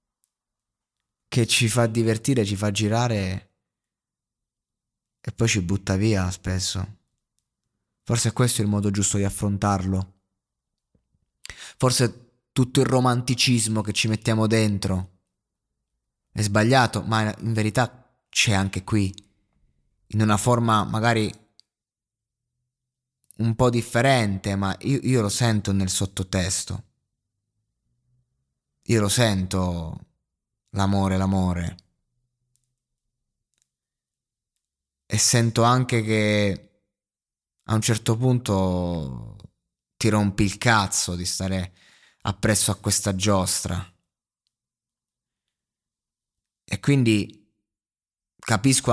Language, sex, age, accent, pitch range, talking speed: Italian, male, 20-39, native, 95-120 Hz, 95 wpm